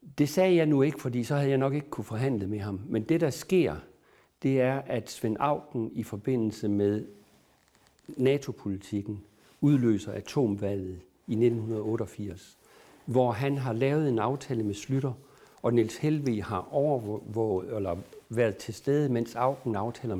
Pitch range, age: 105-135 Hz, 60-79